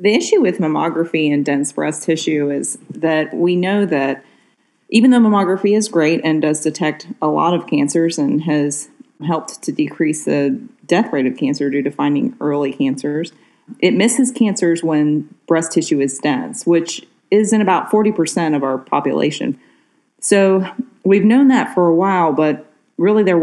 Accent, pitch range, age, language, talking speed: American, 145-185 Hz, 40-59, English, 170 wpm